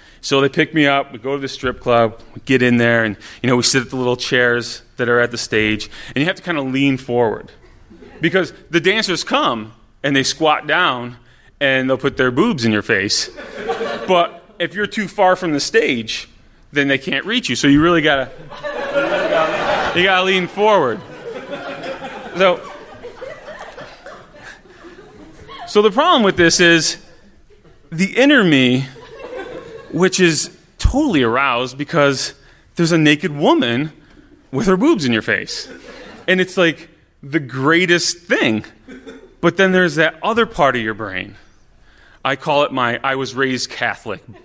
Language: English